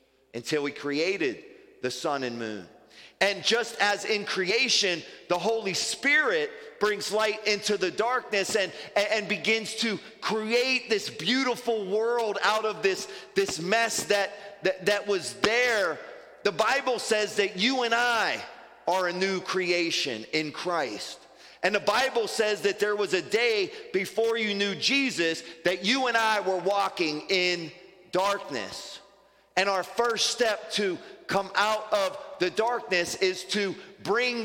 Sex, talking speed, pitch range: male, 150 wpm, 175-225 Hz